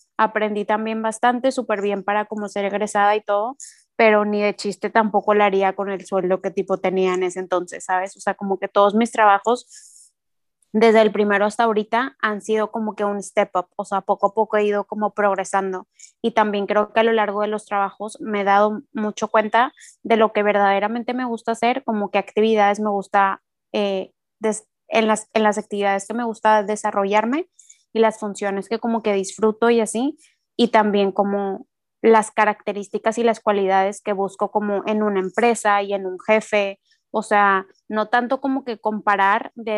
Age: 20-39